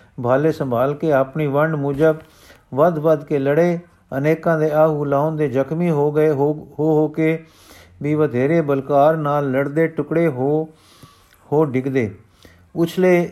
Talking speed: 135 wpm